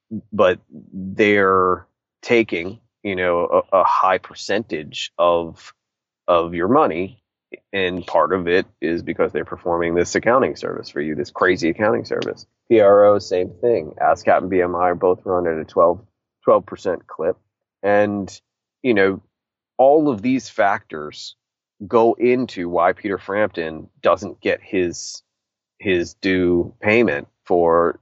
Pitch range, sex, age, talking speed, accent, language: 85-105 Hz, male, 30-49, 135 wpm, American, English